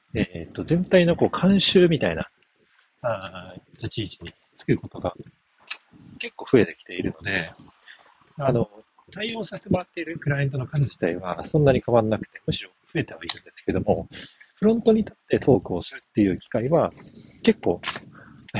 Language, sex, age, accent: Japanese, male, 40-59, native